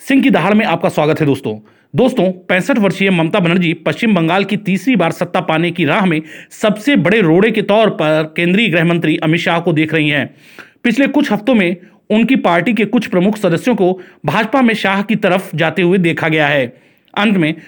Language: Hindi